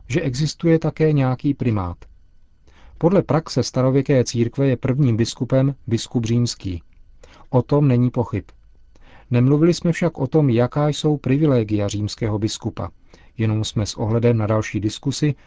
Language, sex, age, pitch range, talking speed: Czech, male, 40-59, 110-135 Hz, 135 wpm